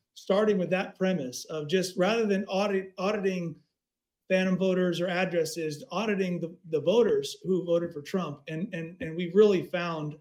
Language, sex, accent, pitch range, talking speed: English, male, American, 155-185 Hz, 165 wpm